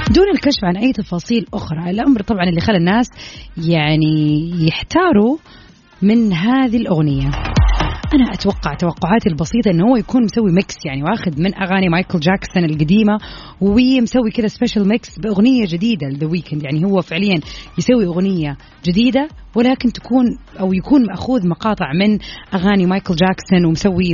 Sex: female